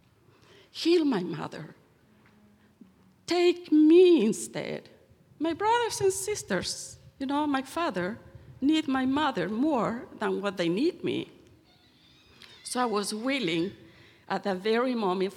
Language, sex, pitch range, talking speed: English, female, 185-260 Hz, 120 wpm